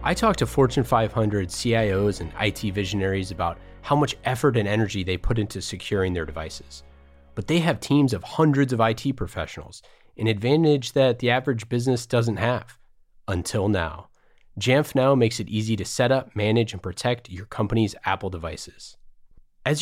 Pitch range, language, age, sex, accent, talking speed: 100-130 Hz, English, 30-49, male, American, 170 wpm